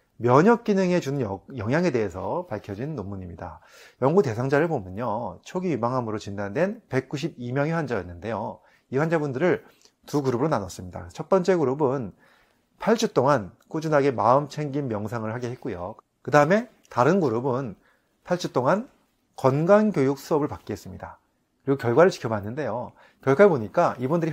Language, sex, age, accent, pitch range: Korean, male, 30-49, native, 115-165 Hz